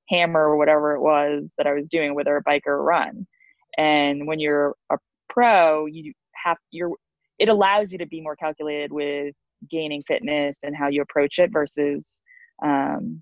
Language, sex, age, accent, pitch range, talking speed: English, female, 20-39, American, 145-180 Hz, 180 wpm